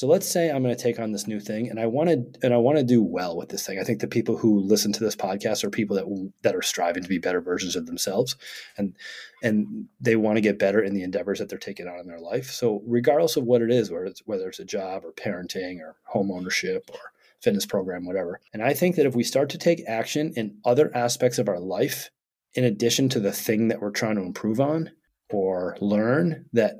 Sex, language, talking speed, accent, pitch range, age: male, English, 255 wpm, American, 105-130 Hz, 30-49